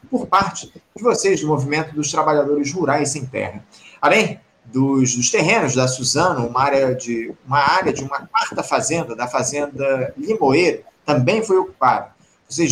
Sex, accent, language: male, Brazilian, Portuguese